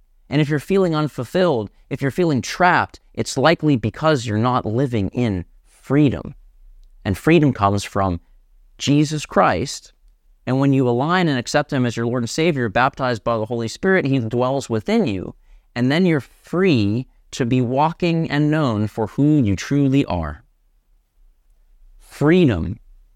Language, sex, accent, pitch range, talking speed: English, male, American, 100-155 Hz, 155 wpm